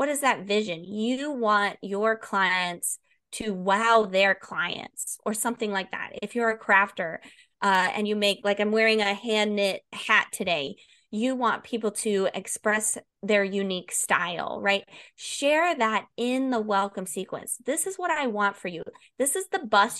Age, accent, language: 20-39, American, English